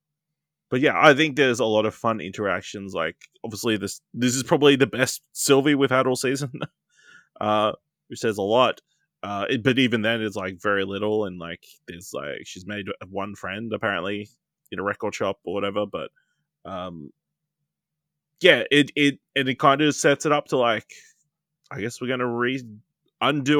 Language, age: English, 20-39